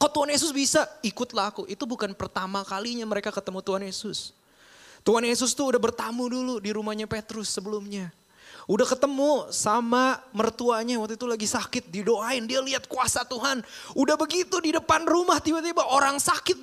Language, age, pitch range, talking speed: Indonesian, 20-39, 165-275 Hz, 165 wpm